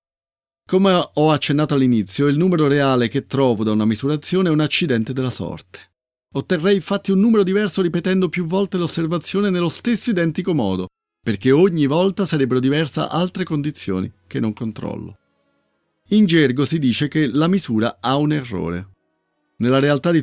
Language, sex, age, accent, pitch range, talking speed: Italian, male, 40-59, native, 105-160 Hz, 155 wpm